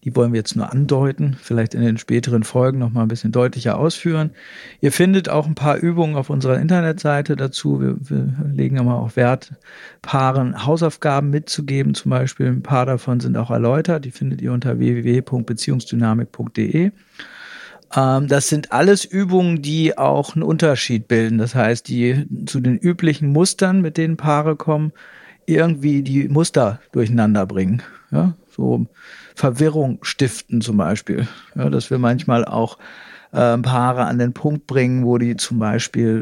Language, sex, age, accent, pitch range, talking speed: German, male, 50-69, German, 120-155 Hz, 155 wpm